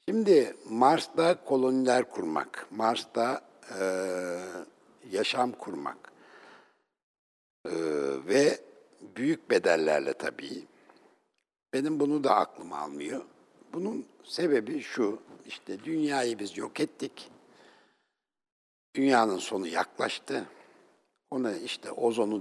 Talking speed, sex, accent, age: 85 wpm, male, native, 60-79